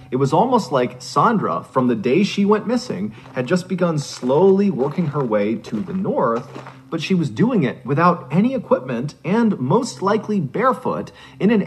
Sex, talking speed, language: male, 180 wpm, English